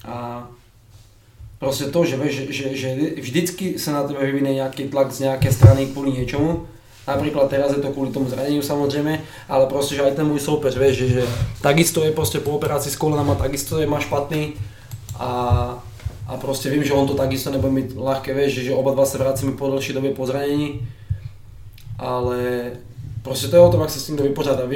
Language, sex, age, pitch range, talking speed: Czech, male, 20-39, 130-145 Hz, 205 wpm